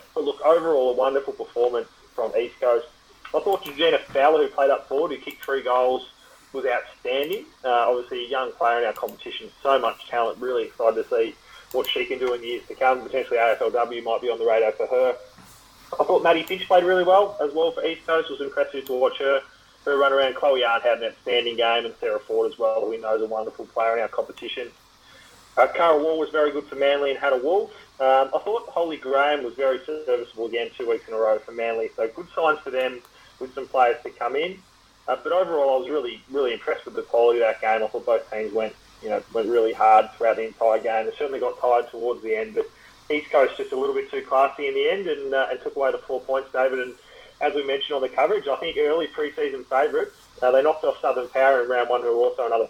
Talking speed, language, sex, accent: 245 wpm, English, male, Australian